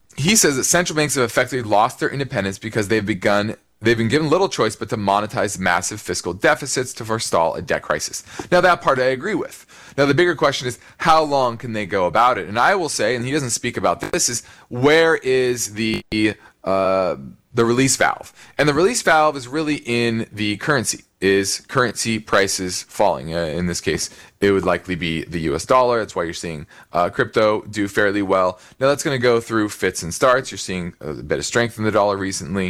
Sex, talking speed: male, 215 wpm